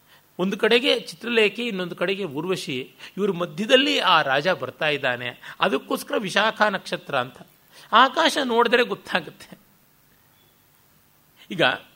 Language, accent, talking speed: Kannada, native, 100 wpm